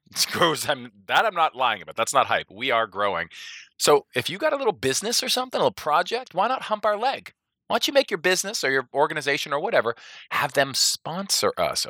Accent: American